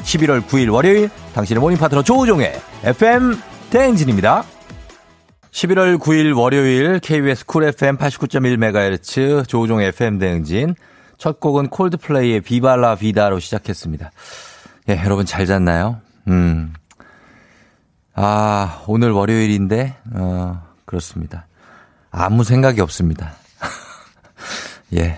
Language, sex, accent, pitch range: Korean, male, native, 95-145 Hz